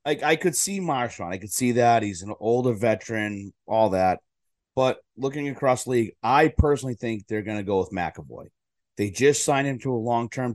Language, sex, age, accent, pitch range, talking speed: English, male, 30-49, American, 100-130 Hz, 205 wpm